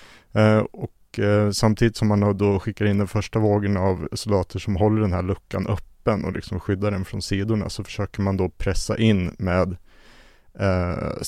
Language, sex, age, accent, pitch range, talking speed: Swedish, male, 30-49, Norwegian, 95-110 Hz, 180 wpm